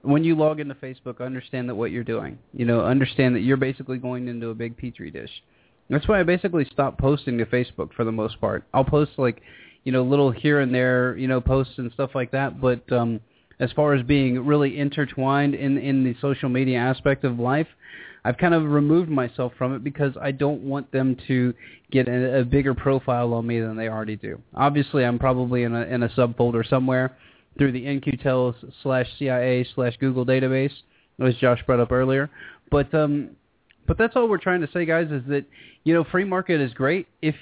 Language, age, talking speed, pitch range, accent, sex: English, 20-39, 205 wpm, 120-140 Hz, American, male